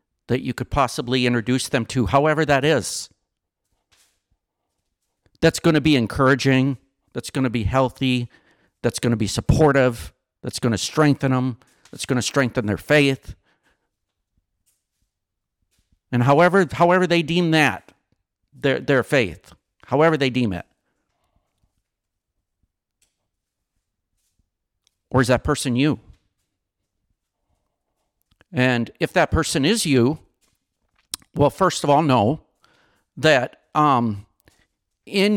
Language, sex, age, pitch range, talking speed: English, male, 50-69, 100-140 Hz, 115 wpm